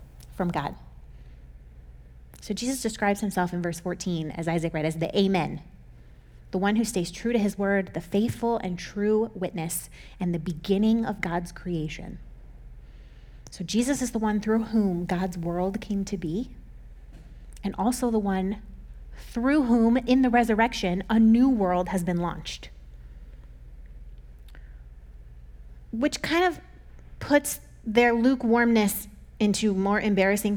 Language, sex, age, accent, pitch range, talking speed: English, female, 30-49, American, 155-230 Hz, 135 wpm